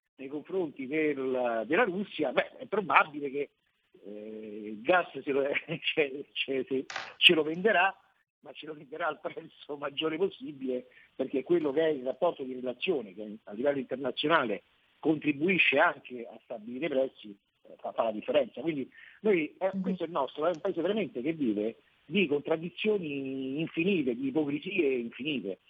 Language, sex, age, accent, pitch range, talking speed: Italian, male, 50-69, native, 130-180 Hz, 150 wpm